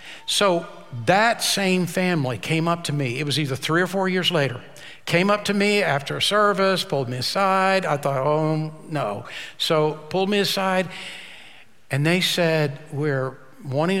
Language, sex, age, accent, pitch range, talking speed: English, male, 60-79, American, 135-165 Hz, 165 wpm